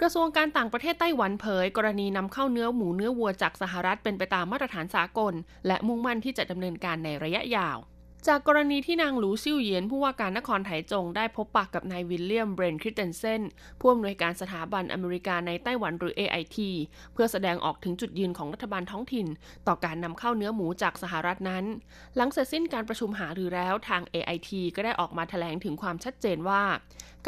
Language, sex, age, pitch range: Thai, female, 20-39, 175-225 Hz